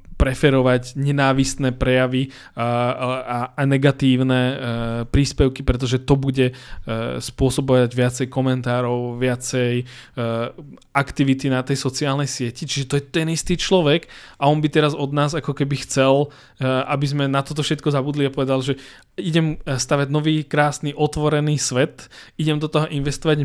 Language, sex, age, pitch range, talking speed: Czech, male, 20-39, 130-150 Hz, 135 wpm